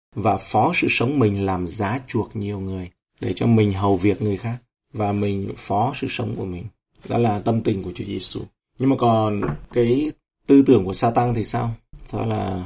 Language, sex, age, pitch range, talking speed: Vietnamese, male, 30-49, 105-125 Hz, 205 wpm